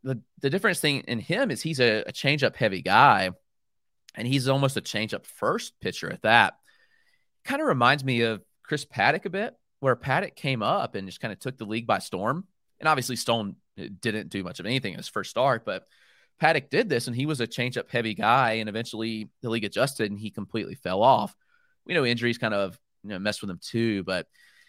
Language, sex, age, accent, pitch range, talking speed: English, male, 30-49, American, 110-145 Hz, 210 wpm